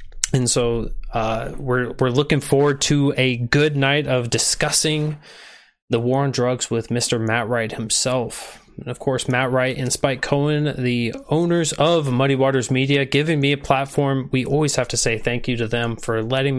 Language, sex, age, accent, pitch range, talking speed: English, male, 20-39, American, 120-140 Hz, 185 wpm